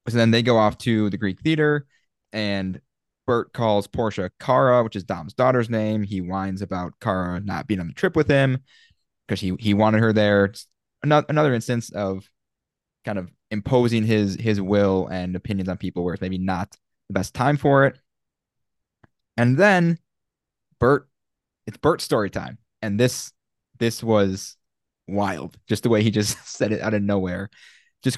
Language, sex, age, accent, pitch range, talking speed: English, male, 20-39, American, 100-135 Hz, 175 wpm